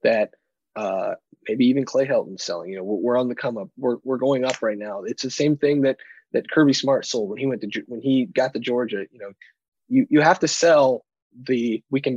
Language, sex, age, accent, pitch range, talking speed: English, male, 20-39, American, 120-145 Hz, 240 wpm